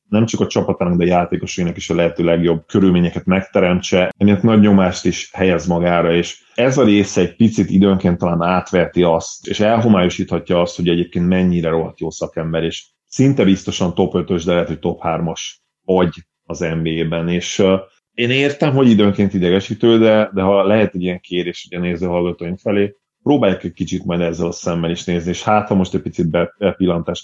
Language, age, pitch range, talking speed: Hungarian, 30-49, 85-95 Hz, 180 wpm